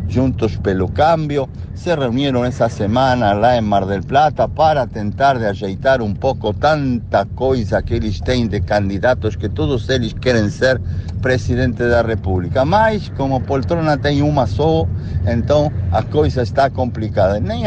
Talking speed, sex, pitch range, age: 155 wpm, male, 100-125 Hz, 60-79